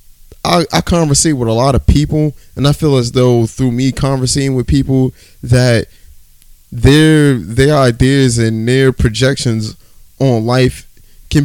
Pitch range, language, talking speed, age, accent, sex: 110-130 Hz, English, 145 wpm, 20-39, American, male